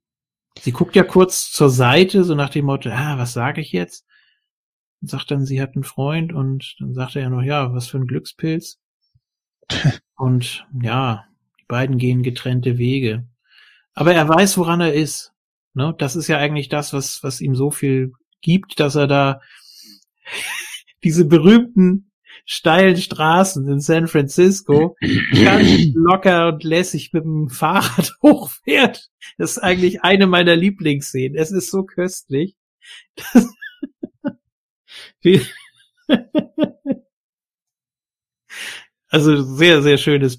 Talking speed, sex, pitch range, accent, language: 135 wpm, male, 135-180 Hz, German, German